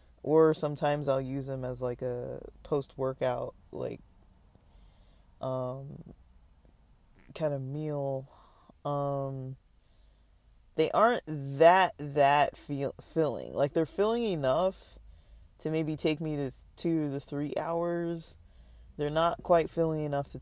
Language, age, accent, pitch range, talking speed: English, 20-39, American, 125-150 Hz, 115 wpm